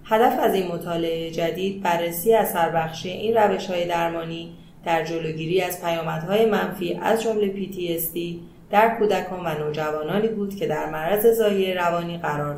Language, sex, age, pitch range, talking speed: Persian, female, 30-49, 165-205 Hz, 145 wpm